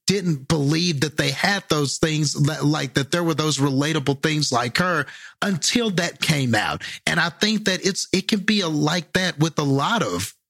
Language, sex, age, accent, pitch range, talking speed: English, male, 40-59, American, 140-180 Hz, 200 wpm